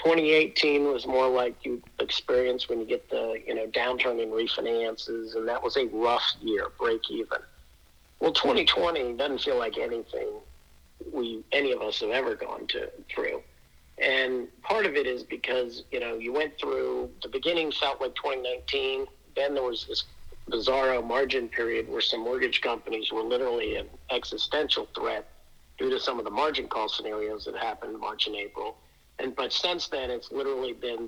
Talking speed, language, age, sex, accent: 175 wpm, English, 50-69, male, American